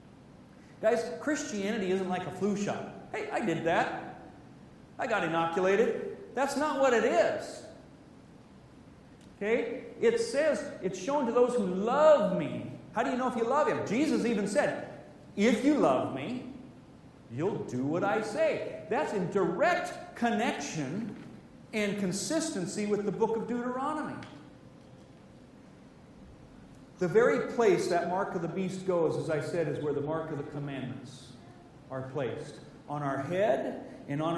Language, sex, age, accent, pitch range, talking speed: English, male, 40-59, American, 160-240 Hz, 150 wpm